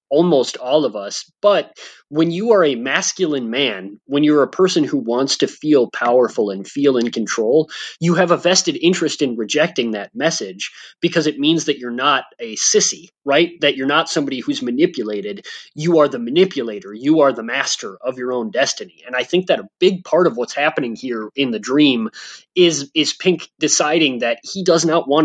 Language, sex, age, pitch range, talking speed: English, male, 30-49, 135-195 Hz, 195 wpm